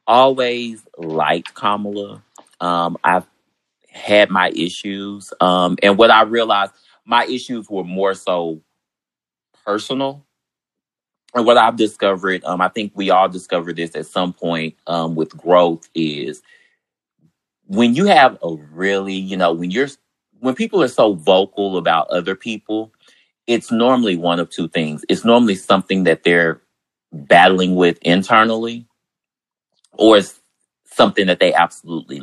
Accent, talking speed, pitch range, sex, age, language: American, 140 wpm, 85-110 Hz, male, 30-49, English